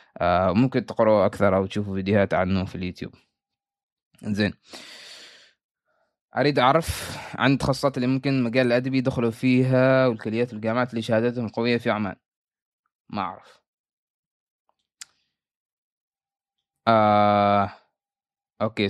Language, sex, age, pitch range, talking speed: Arabic, male, 20-39, 105-130 Hz, 105 wpm